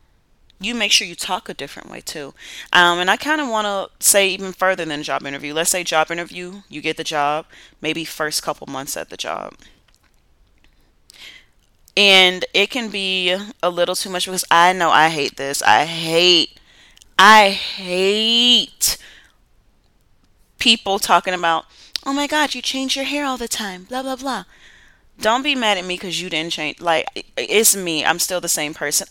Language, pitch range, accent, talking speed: English, 155-200 Hz, American, 180 wpm